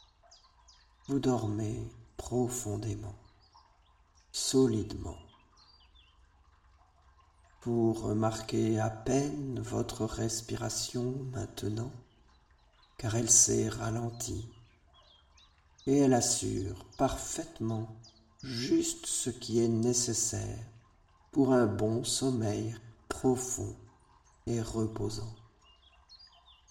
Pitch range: 100-120 Hz